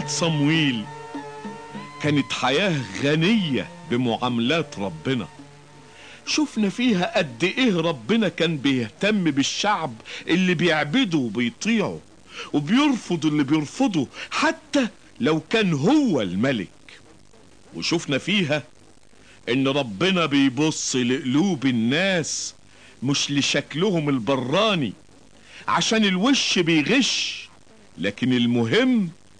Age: 50-69